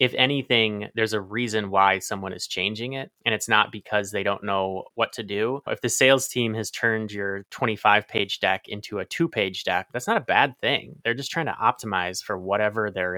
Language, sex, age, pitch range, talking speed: English, male, 20-39, 100-120 Hz, 220 wpm